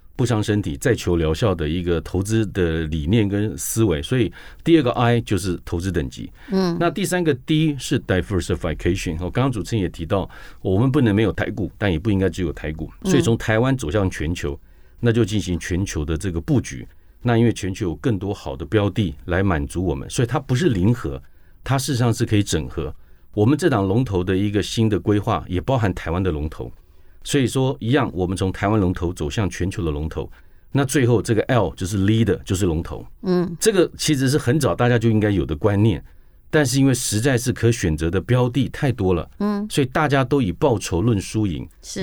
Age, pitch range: 50-69, 85-125 Hz